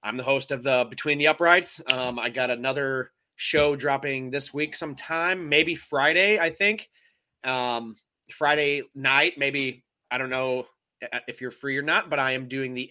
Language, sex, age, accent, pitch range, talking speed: English, male, 30-49, American, 125-155 Hz, 175 wpm